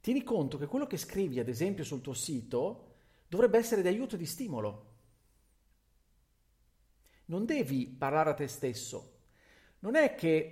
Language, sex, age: Italian, male, 40-59